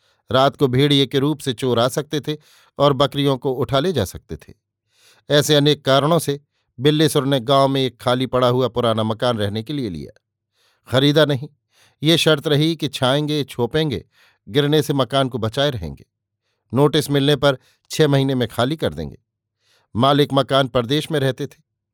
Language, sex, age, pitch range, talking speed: Hindi, male, 50-69, 120-145 Hz, 180 wpm